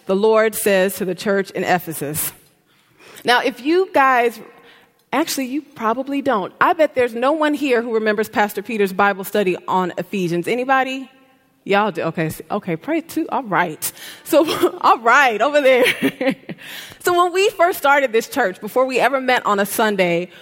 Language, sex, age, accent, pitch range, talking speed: English, female, 20-39, American, 195-265 Hz, 170 wpm